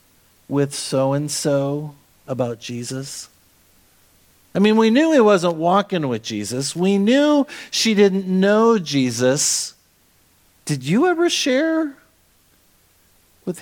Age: 50-69